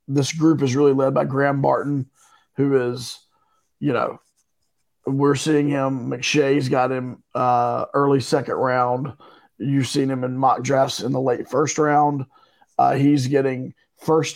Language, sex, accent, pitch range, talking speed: English, male, American, 130-150 Hz, 155 wpm